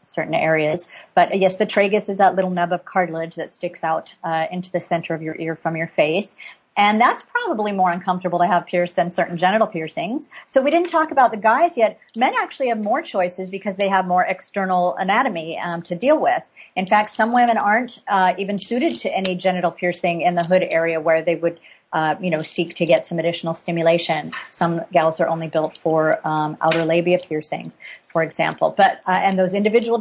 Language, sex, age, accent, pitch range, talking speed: English, female, 50-69, American, 170-210 Hz, 210 wpm